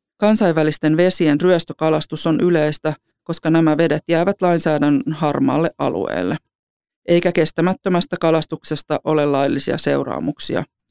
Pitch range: 150-175 Hz